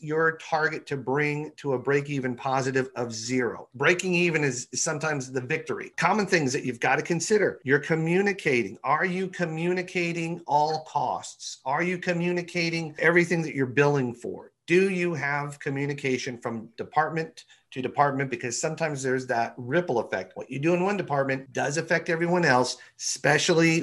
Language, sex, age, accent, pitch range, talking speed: English, male, 40-59, American, 130-170 Hz, 160 wpm